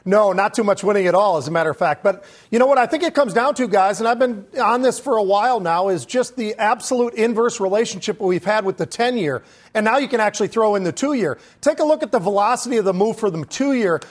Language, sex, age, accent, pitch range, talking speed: English, male, 40-59, American, 200-245 Hz, 270 wpm